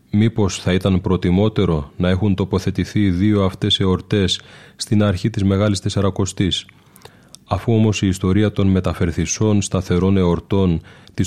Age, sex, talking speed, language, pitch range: 30-49, male, 130 wpm, Greek, 90-105 Hz